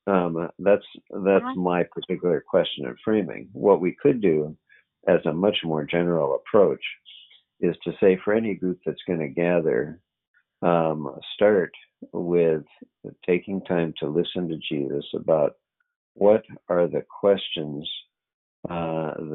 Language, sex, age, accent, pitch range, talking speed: English, male, 50-69, American, 80-90 Hz, 135 wpm